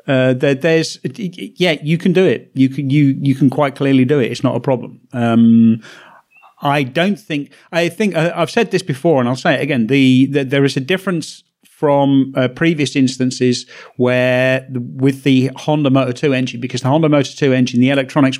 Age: 40-59